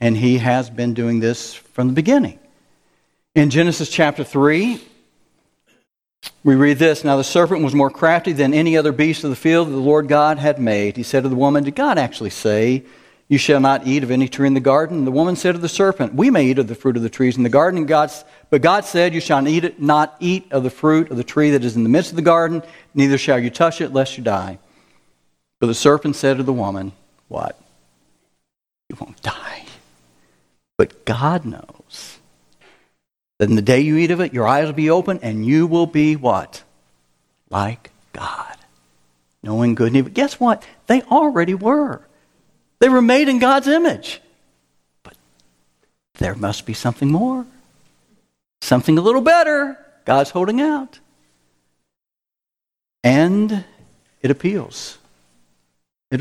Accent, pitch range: American, 105-165 Hz